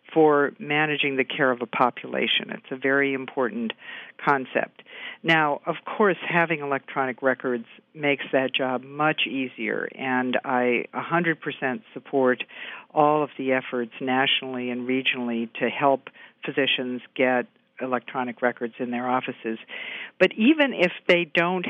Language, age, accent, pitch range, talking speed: English, 50-69, American, 130-155 Hz, 135 wpm